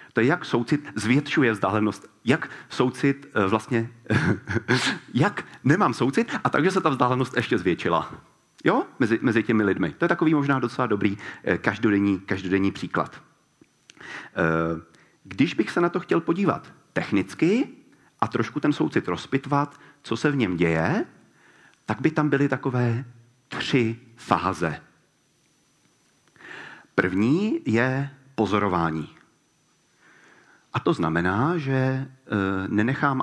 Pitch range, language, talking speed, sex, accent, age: 95-130 Hz, Czech, 120 wpm, male, native, 40-59